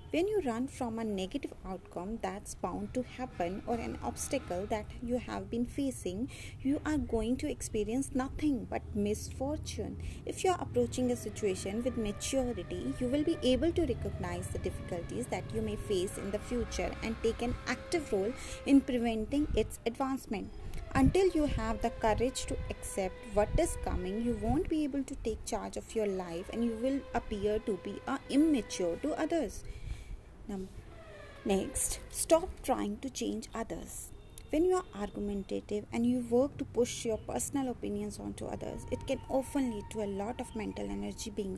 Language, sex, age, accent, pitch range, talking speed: Hindi, female, 30-49, native, 205-275 Hz, 170 wpm